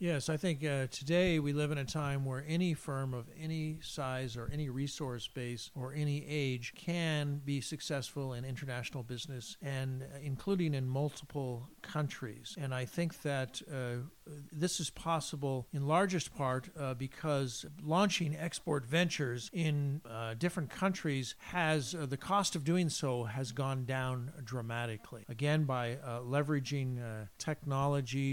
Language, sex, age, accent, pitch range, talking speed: French, male, 50-69, American, 125-155 Hz, 155 wpm